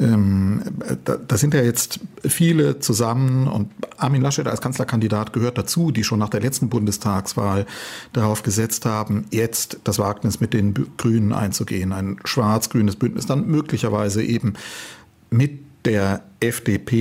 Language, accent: German, German